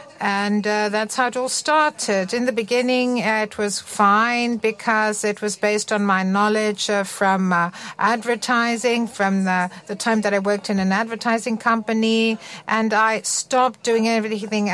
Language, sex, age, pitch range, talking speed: Greek, female, 60-79, 210-250 Hz, 165 wpm